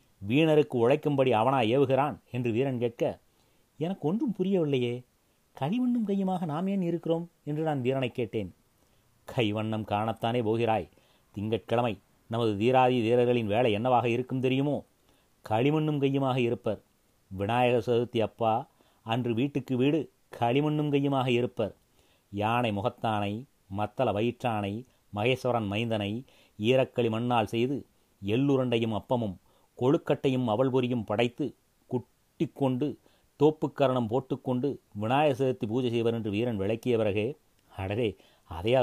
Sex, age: male, 30-49